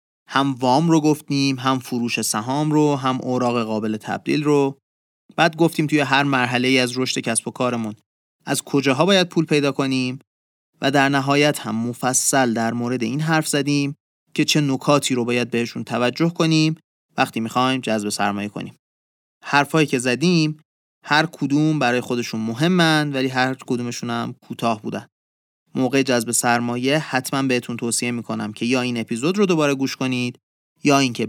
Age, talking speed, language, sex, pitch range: 30-49, 155 wpm, Persian, male, 120-155 Hz